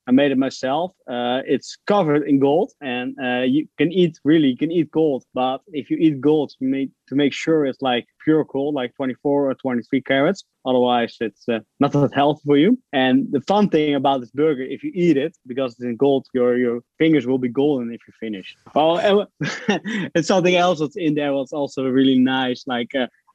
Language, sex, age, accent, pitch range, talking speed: English, male, 20-39, Dutch, 130-155 Hz, 210 wpm